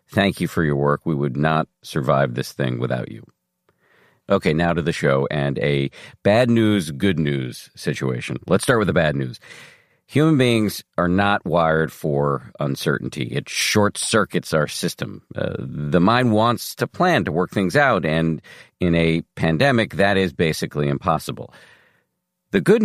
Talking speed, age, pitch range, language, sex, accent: 165 wpm, 50-69, 75-105 Hz, English, male, American